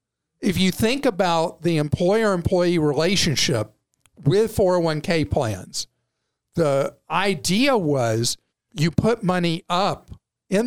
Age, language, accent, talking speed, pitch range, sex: 50-69, English, American, 100 wpm, 150-195 Hz, male